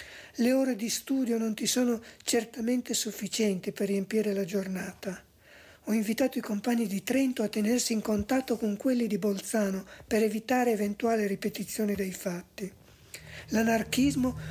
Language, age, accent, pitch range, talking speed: Italian, 50-69, native, 200-245 Hz, 140 wpm